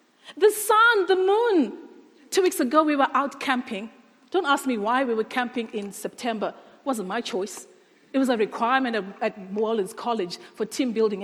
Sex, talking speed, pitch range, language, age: female, 185 wpm, 230-375 Hz, English, 40-59